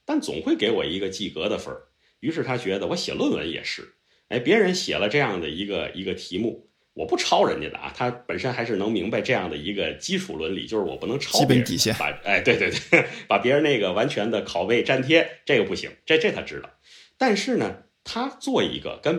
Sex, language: male, Chinese